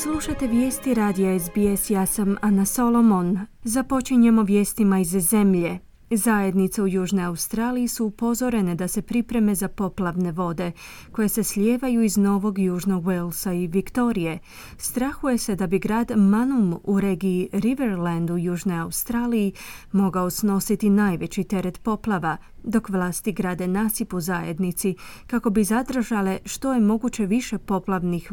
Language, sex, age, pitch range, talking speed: Croatian, female, 30-49, 170-220 Hz, 135 wpm